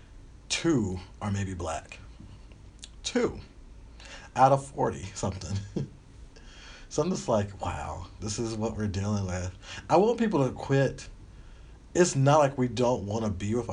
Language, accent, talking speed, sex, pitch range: English, American, 150 wpm, male, 95-120 Hz